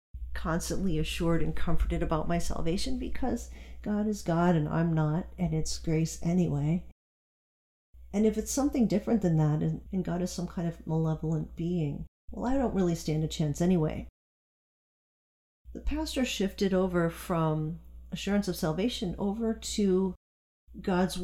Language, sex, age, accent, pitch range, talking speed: English, female, 40-59, American, 155-185 Hz, 145 wpm